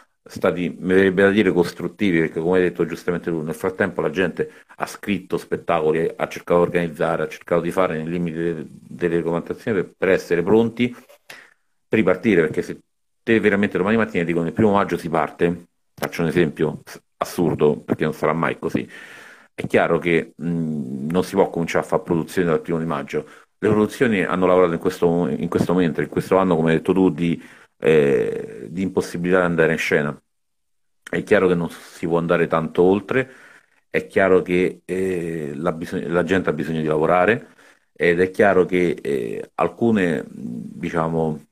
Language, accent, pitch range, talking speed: Italian, native, 85-95 Hz, 180 wpm